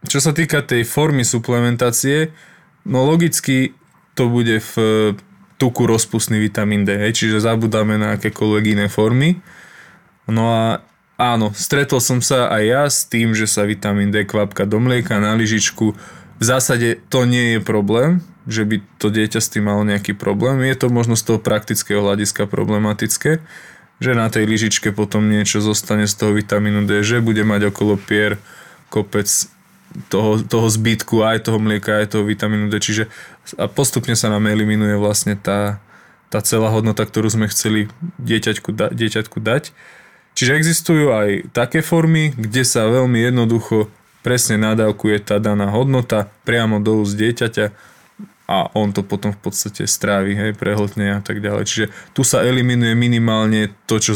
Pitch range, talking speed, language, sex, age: 105-120 Hz, 160 wpm, Slovak, male, 20-39